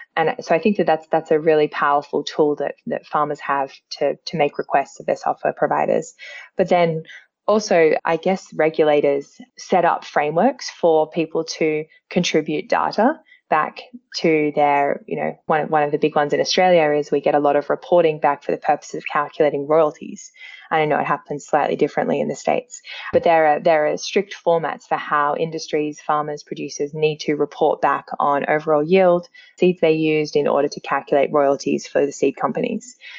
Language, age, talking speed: English, 10-29, 190 wpm